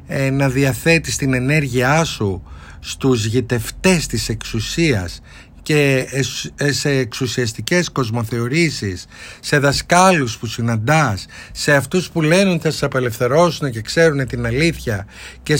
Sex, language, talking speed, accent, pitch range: male, Greek, 110 wpm, native, 110-155 Hz